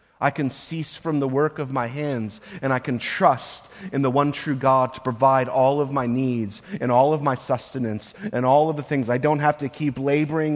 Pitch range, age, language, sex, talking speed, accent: 120-185 Hz, 30-49, English, male, 225 wpm, American